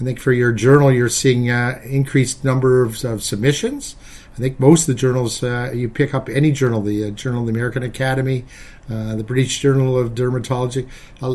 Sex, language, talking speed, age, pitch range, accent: male, English, 205 wpm, 50-69, 125-150 Hz, American